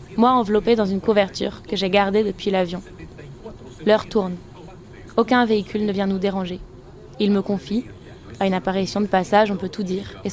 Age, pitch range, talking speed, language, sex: 20-39, 195-230 Hz, 180 wpm, French, female